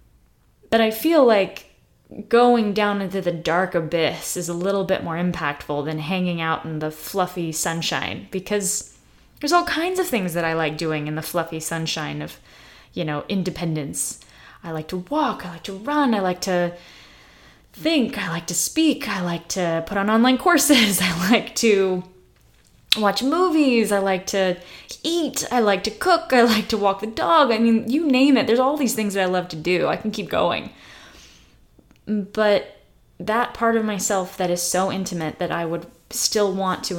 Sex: female